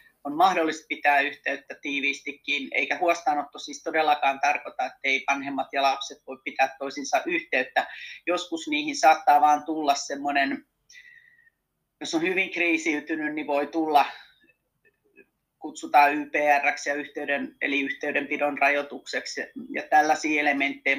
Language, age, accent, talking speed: Finnish, 30-49, native, 115 wpm